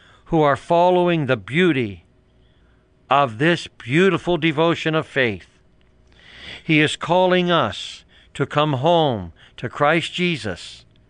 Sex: male